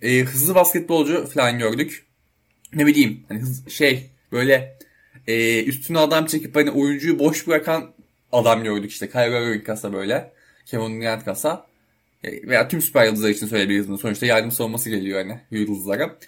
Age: 20-39